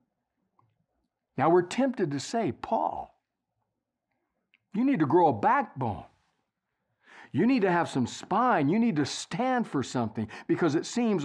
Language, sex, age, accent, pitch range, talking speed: English, male, 60-79, American, 135-210 Hz, 145 wpm